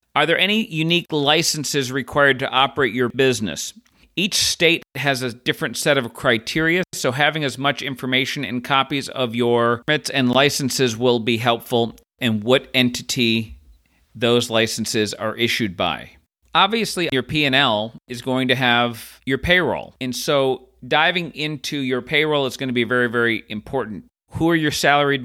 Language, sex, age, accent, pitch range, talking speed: English, male, 40-59, American, 120-145 Hz, 160 wpm